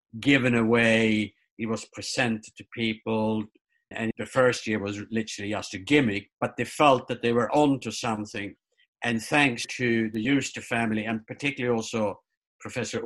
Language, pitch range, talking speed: English, 110-125 Hz, 155 wpm